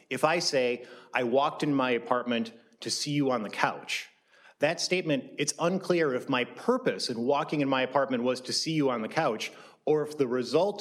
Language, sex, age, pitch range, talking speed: English, male, 30-49, 125-150 Hz, 205 wpm